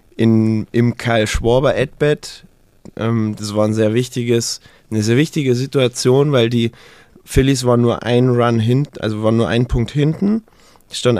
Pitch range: 105-120 Hz